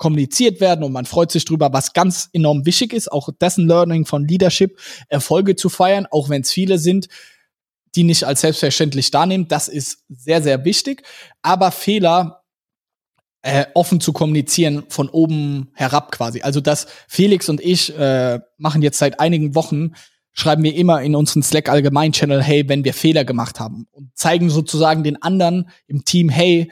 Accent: German